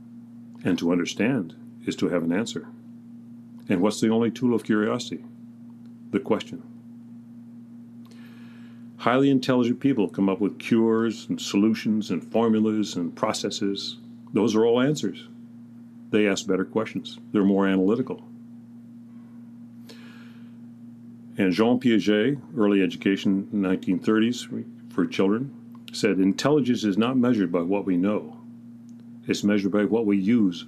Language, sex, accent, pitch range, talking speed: English, male, American, 110-120 Hz, 125 wpm